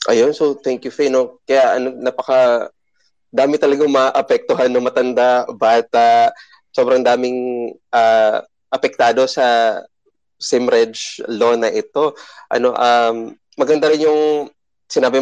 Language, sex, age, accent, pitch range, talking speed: English, male, 20-39, Filipino, 120-155 Hz, 125 wpm